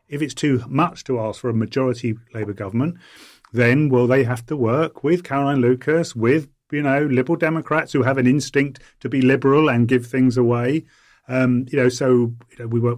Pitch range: 115-140 Hz